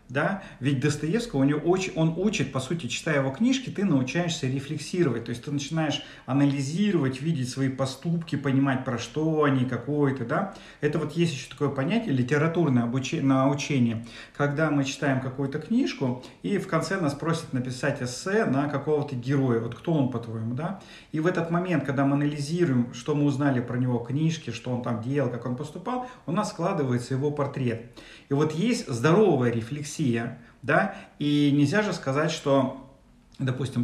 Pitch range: 130-160 Hz